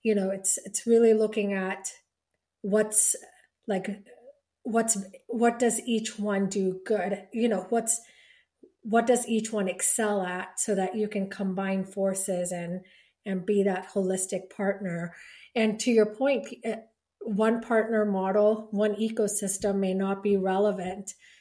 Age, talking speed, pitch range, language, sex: 30-49, 140 wpm, 195-225 Hz, English, female